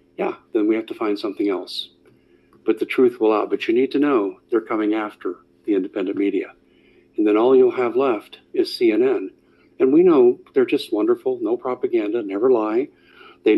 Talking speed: 190 wpm